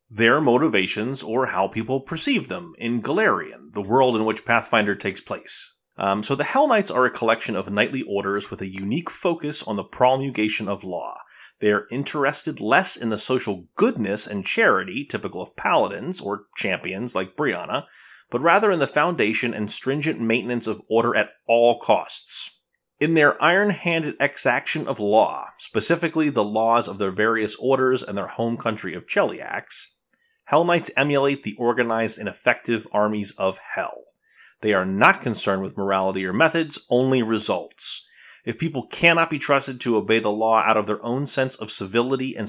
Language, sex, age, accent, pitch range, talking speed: English, male, 30-49, American, 105-130 Hz, 170 wpm